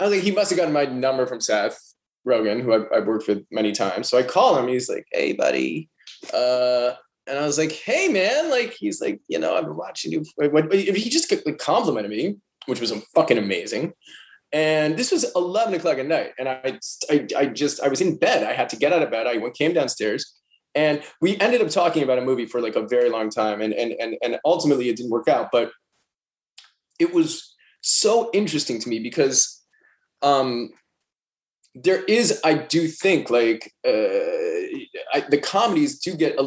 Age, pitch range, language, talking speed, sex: 20-39, 120-195 Hz, English, 200 wpm, male